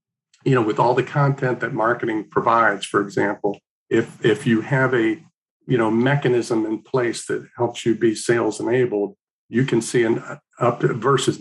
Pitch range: 110-135 Hz